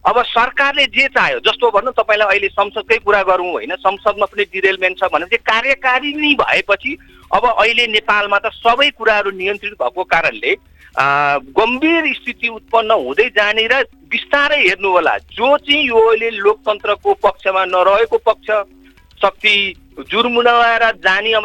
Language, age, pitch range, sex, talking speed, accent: English, 50-69, 205-270 Hz, male, 90 wpm, Indian